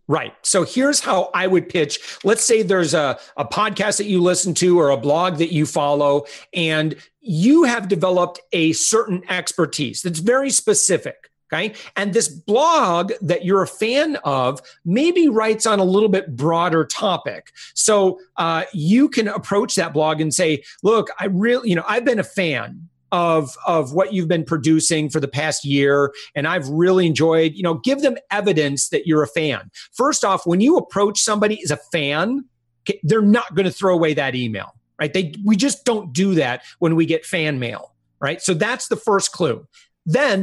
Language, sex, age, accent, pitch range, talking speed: English, male, 40-59, American, 160-210 Hz, 190 wpm